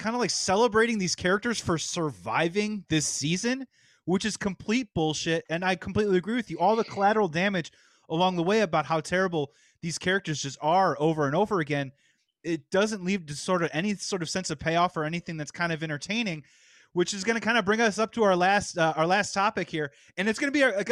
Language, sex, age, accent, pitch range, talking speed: English, male, 30-49, American, 155-205 Hz, 225 wpm